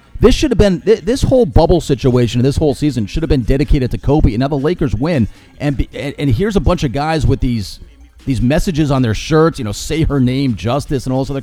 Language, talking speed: English, 245 wpm